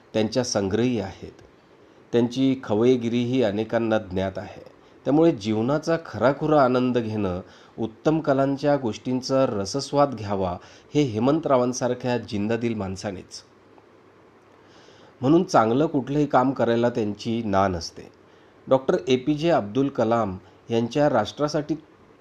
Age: 40-59